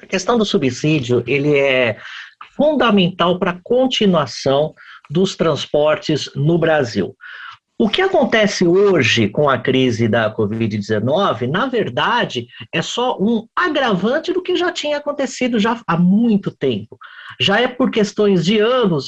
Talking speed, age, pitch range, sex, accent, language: 140 wpm, 50-69, 155-230 Hz, male, Brazilian, Portuguese